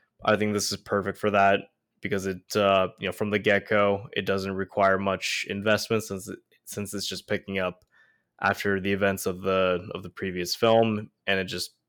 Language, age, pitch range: English, 20-39, 95-110 Hz